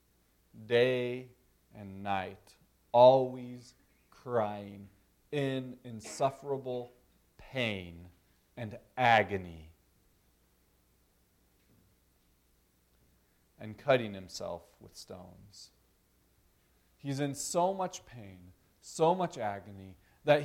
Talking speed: 70 wpm